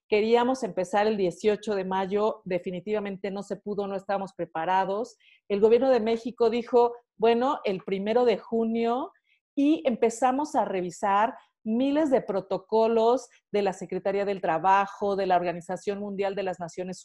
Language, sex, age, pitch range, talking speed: Spanish, female, 40-59, 195-240 Hz, 150 wpm